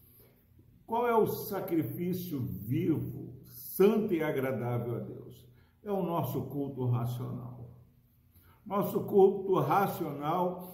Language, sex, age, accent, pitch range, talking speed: Portuguese, male, 60-79, Brazilian, 130-185 Hz, 100 wpm